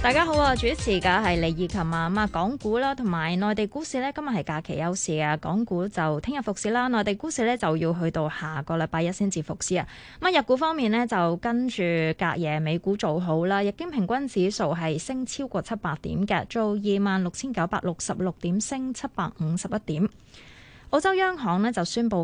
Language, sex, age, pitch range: Chinese, female, 20-39, 170-230 Hz